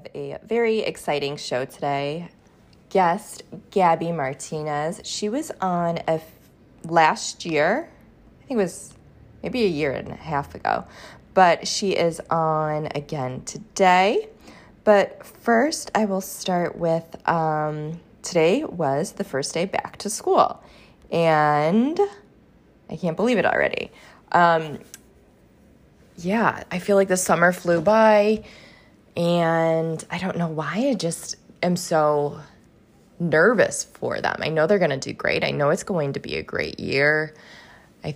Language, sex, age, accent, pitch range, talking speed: English, female, 20-39, American, 145-185 Hz, 145 wpm